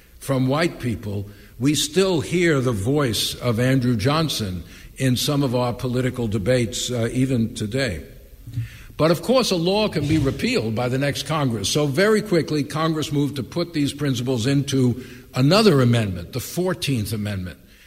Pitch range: 120-145 Hz